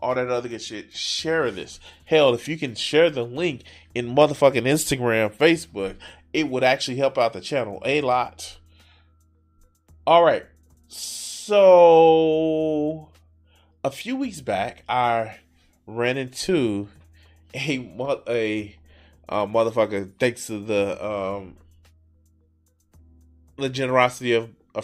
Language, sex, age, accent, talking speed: English, male, 20-39, American, 120 wpm